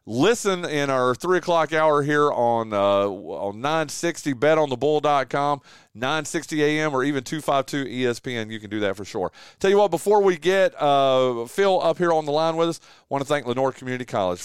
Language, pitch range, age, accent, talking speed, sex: English, 125-165 Hz, 40-59, American, 190 wpm, male